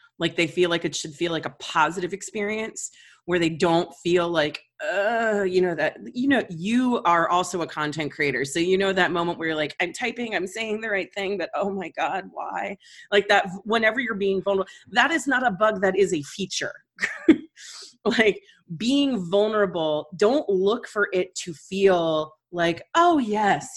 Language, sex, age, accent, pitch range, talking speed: English, female, 30-49, American, 165-225 Hz, 190 wpm